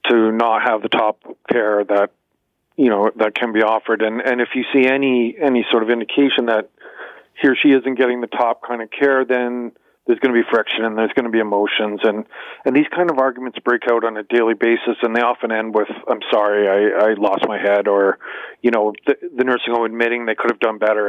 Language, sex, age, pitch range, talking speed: English, male, 40-59, 110-130 Hz, 235 wpm